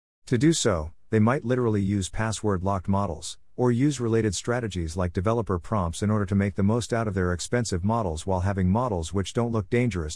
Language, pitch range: English, 90-110 Hz